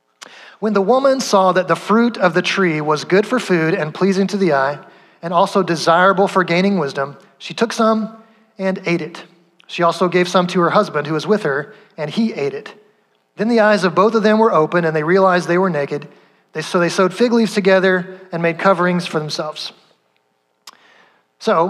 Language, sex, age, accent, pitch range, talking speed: English, male, 30-49, American, 170-210 Hz, 200 wpm